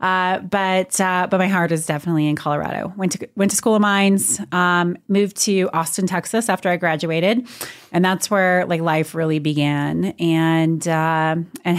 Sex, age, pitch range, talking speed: female, 30-49, 155-180 Hz, 180 wpm